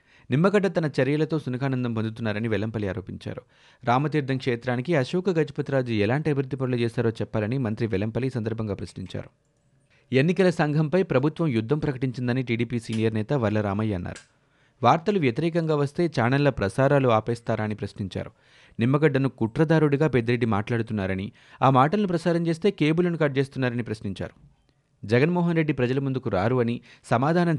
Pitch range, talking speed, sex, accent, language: 115-150 Hz, 120 wpm, male, native, Telugu